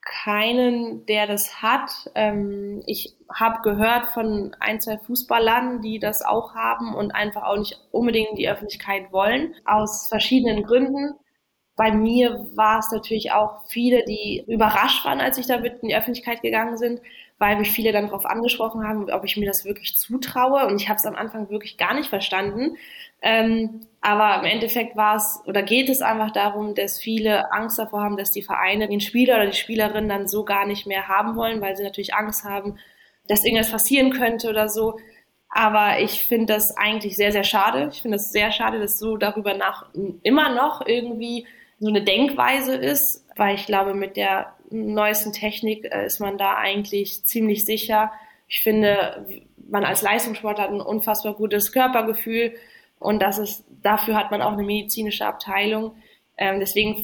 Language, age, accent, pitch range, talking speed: German, 20-39, German, 205-225 Hz, 180 wpm